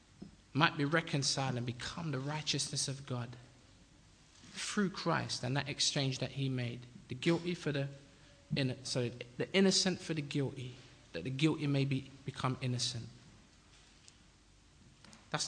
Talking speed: 140 wpm